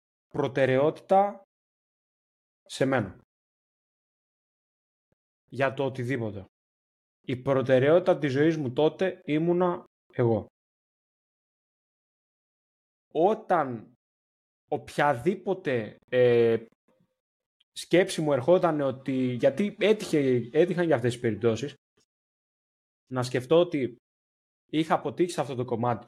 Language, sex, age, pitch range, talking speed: Greek, male, 20-39, 120-175 Hz, 85 wpm